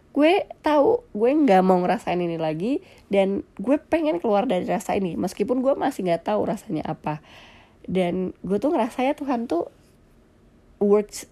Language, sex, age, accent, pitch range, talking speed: Indonesian, female, 20-39, native, 165-225 Hz, 155 wpm